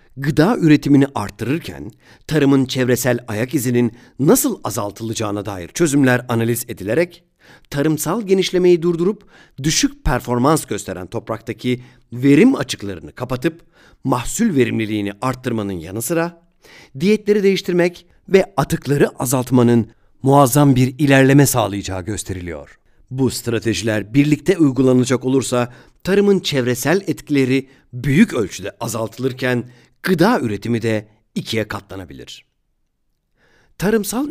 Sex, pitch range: male, 115-155 Hz